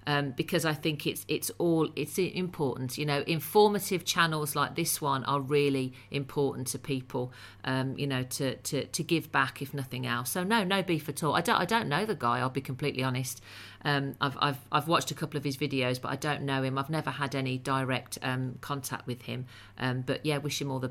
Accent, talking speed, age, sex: British, 230 wpm, 40-59, female